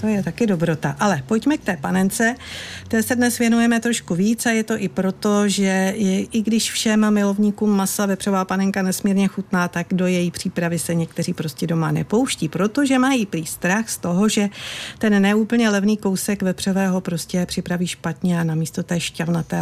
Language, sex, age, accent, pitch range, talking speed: Czech, female, 50-69, native, 165-205 Hz, 175 wpm